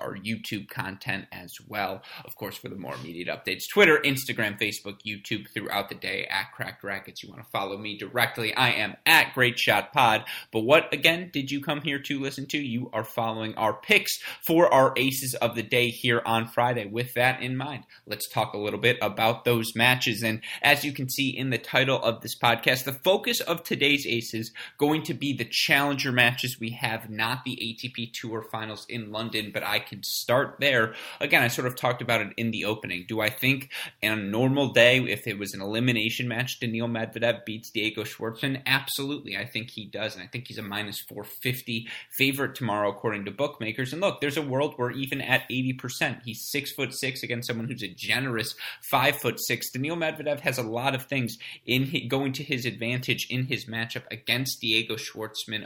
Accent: American